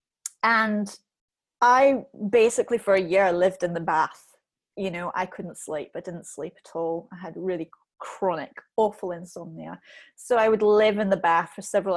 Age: 30-49